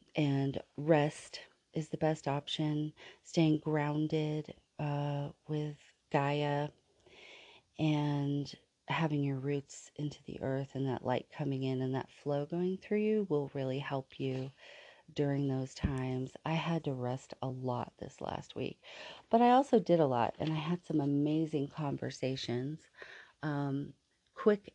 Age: 40-59